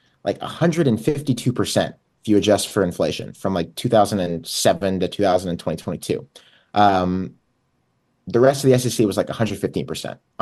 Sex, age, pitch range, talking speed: male, 30-49, 90-110 Hz, 120 wpm